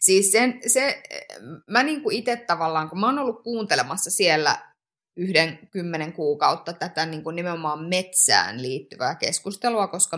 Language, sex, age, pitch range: Finnish, female, 20-39, 160-225 Hz